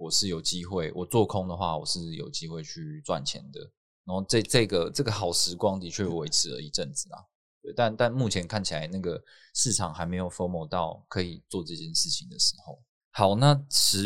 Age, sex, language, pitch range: 20-39, male, Chinese, 85-105 Hz